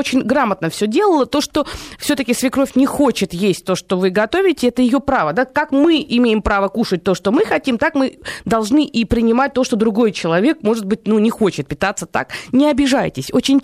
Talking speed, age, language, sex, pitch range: 205 wpm, 20-39, Russian, female, 205-280 Hz